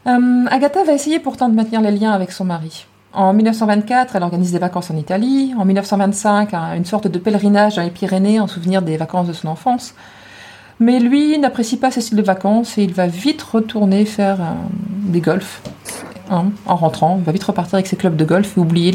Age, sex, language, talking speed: 30-49, female, French, 215 wpm